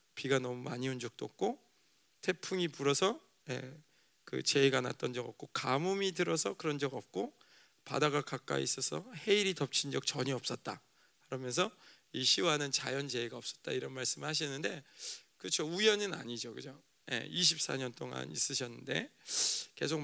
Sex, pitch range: male, 135-185 Hz